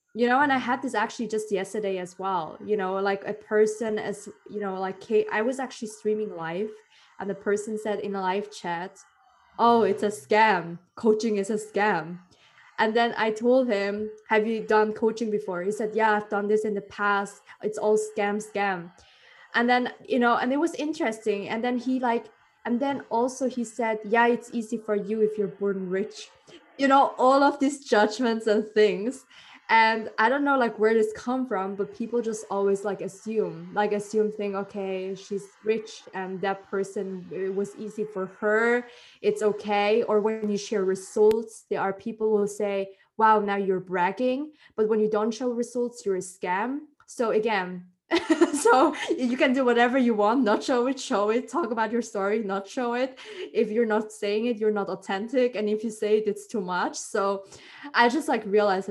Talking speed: 195 wpm